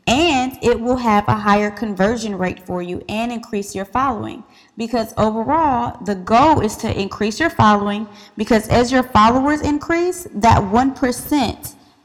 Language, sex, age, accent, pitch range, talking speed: English, female, 20-39, American, 205-265 Hz, 150 wpm